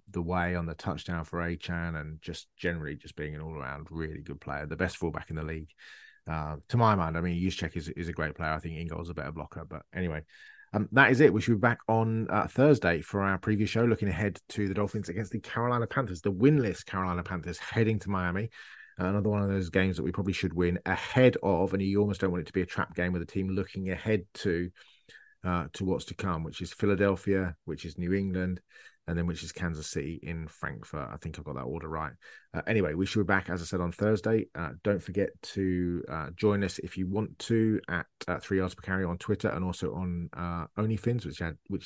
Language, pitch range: English, 85-105 Hz